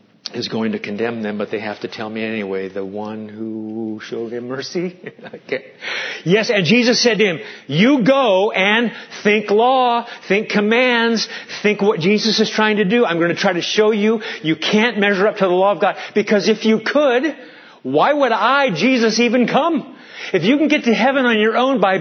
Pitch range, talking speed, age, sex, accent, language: 160-230 Hz, 200 wpm, 40-59, male, American, English